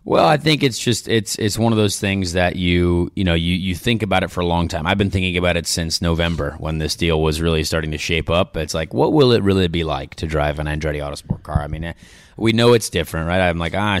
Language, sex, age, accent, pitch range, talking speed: English, male, 30-49, American, 80-95 Hz, 280 wpm